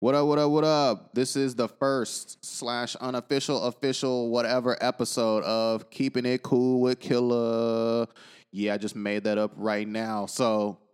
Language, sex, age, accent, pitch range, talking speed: English, male, 20-39, American, 105-125 Hz, 165 wpm